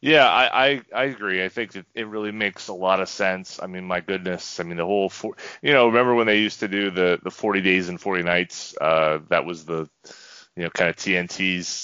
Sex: male